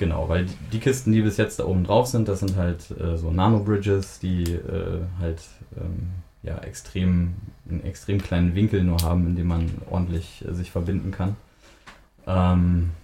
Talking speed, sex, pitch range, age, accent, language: 175 wpm, male, 85-100 Hz, 20-39, German, German